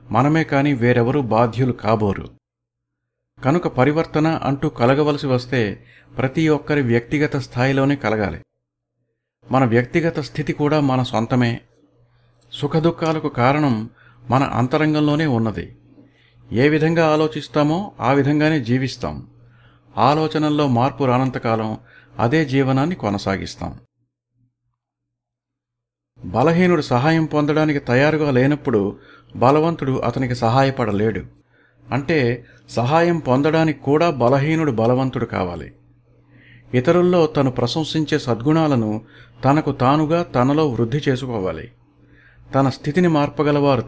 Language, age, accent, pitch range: Telugu, 50-69, native, 120-150 Hz